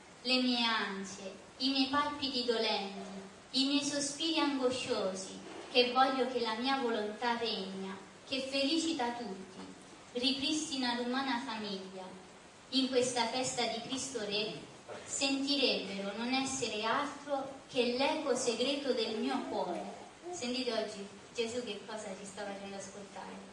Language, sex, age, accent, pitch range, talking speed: Italian, female, 30-49, native, 220-275 Hz, 125 wpm